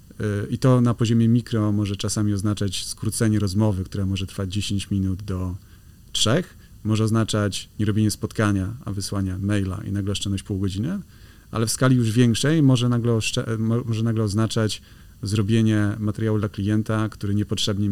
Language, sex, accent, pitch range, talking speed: Polish, male, native, 100-115 Hz, 150 wpm